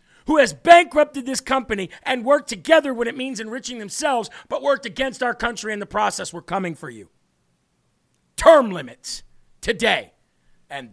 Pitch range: 160-235 Hz